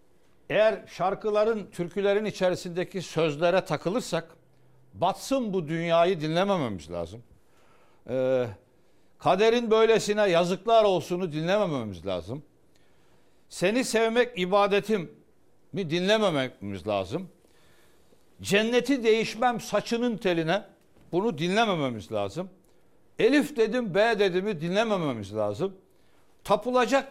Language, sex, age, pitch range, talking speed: Turkish, male, 60-79, 155-220 Hz, 85 wpm